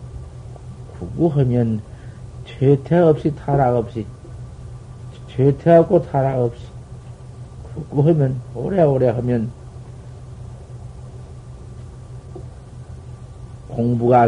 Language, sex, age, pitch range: Korean, male, 50-69, 120-150 Hz